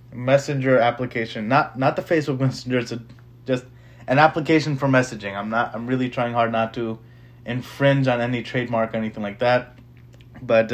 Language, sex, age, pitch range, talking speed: English, male, 20-39, 115-135 Hz, 175 wpm